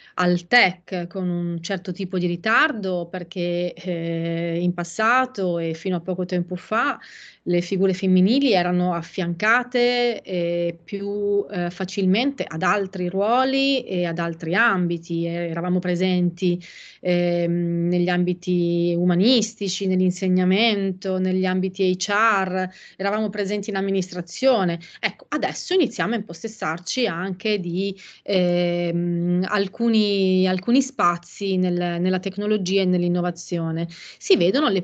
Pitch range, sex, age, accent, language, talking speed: 175-210 Hz, female, 30-49, native, Italian, 115 wpm